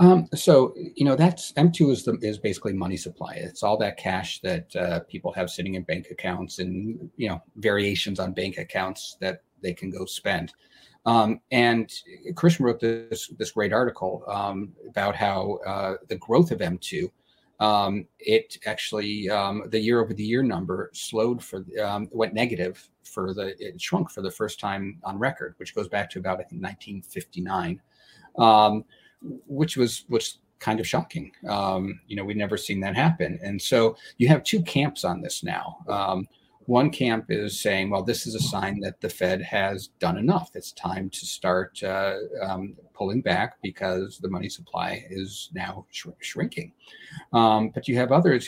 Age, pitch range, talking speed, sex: 30-49, 95-120 Hz, 180 wpm, male